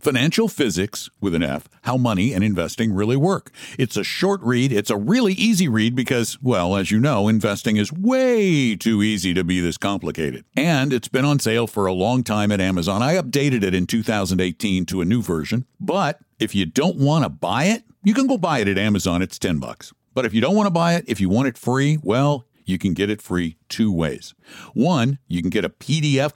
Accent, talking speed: American, 225 wpm